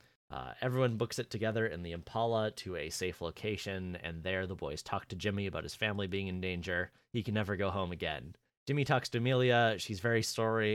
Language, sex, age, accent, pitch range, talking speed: English, male, 30-49, American, 95-115 Hz, 210 wpm